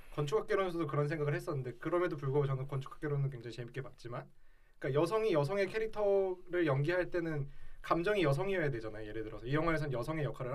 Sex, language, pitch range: male, Korean, 135-170 Hz